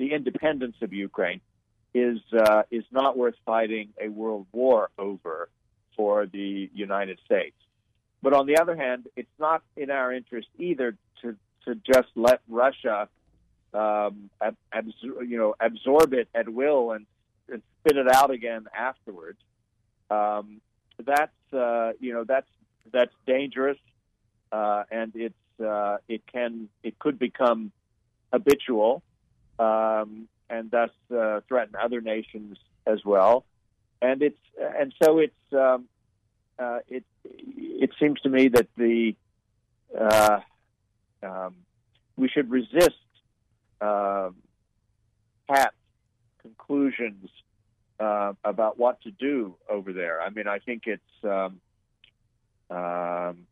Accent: American